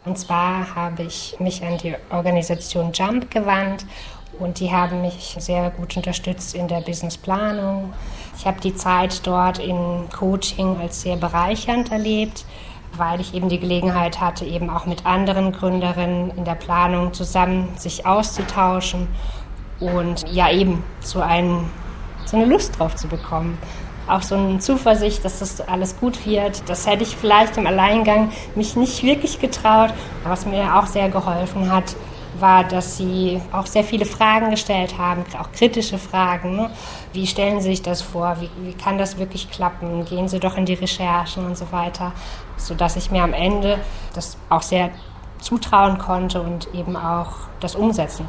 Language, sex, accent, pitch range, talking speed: German, female, German, 175-195 Hz, 165 wpm